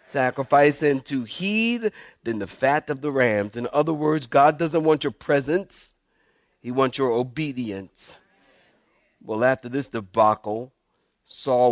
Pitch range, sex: 120-140 Hz, male